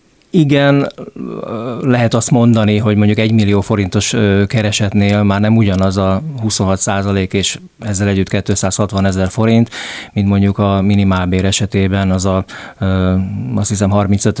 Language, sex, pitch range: Hungarian, male, 100-110 Hz